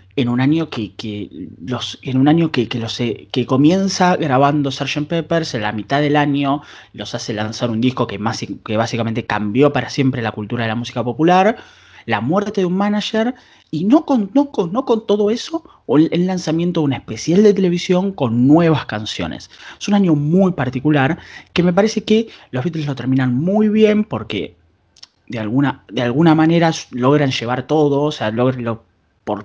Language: Spanish